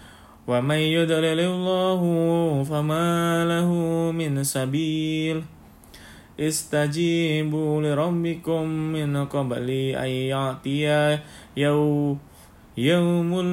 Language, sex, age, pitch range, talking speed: Indonesian, male, 20-39, 130-155 Hz, 60 wpm